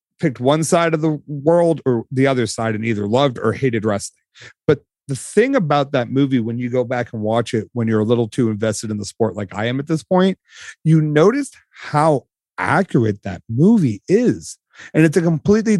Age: 30-49